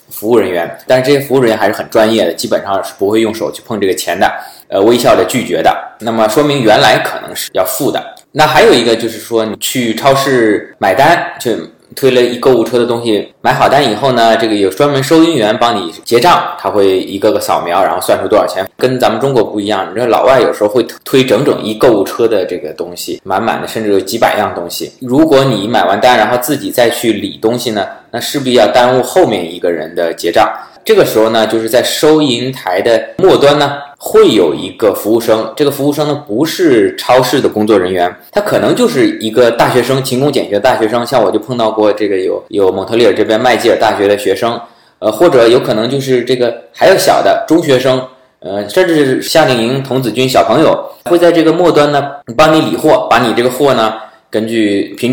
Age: 20-39